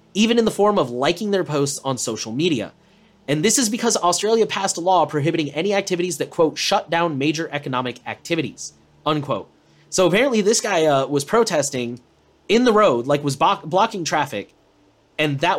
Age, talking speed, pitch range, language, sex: 30-49, 180 wpm, 130-180 Hz, English, male